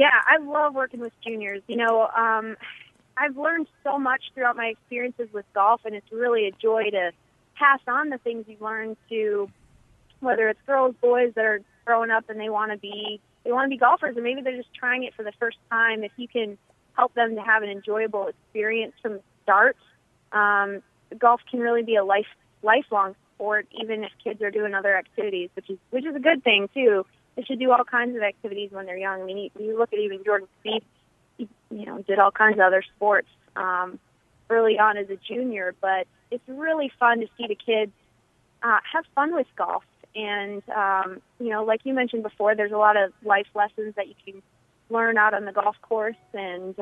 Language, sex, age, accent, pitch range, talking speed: English, female, 20-39, American, 200-240 Hz, 210 wpm